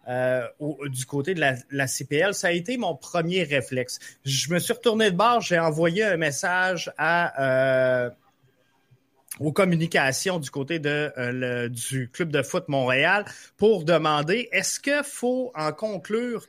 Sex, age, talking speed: male, 30-49, 165 wpm